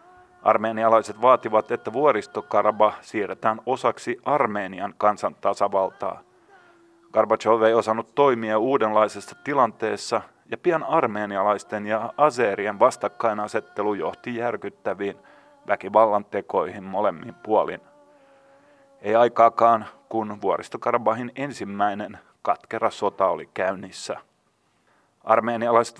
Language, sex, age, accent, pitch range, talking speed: Finnish, male, 30-49, native, 105-120 Hz, 80 wpm